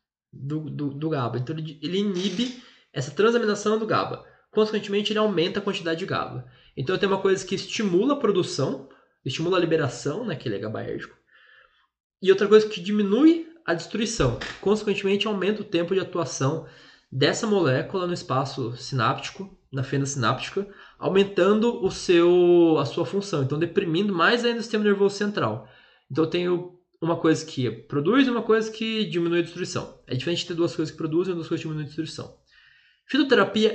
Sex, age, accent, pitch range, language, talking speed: male, 20-39, Brazilian, 140-200 Hz, Portuguese, 170 wpm